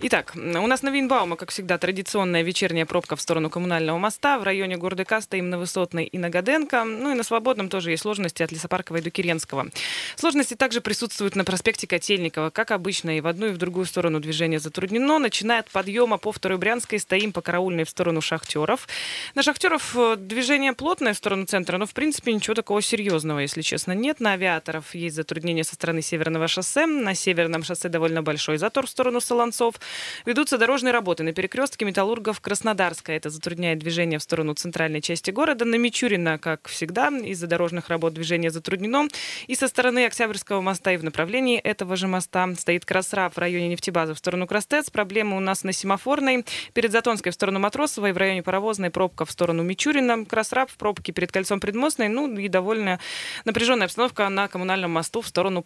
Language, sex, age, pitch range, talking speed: Russian, female, 20-39, 170-230 Hz, 185 wpm